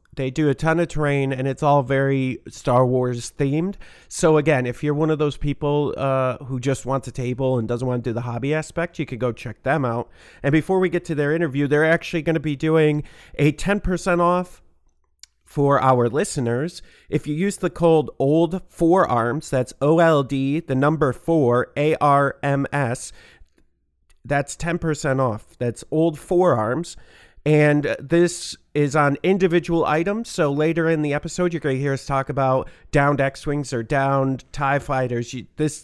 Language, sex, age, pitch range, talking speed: English, male, 40-59, 130-165 Hz, 175 wpm